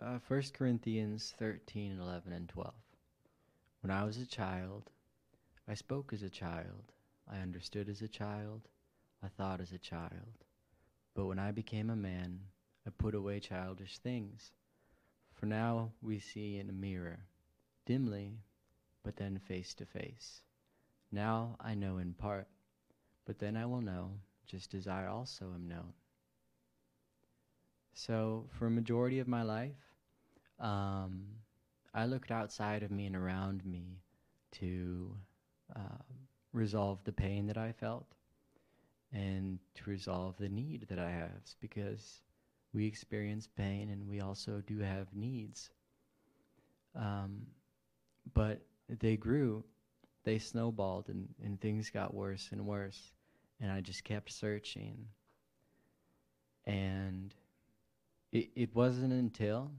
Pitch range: 95-110 Hz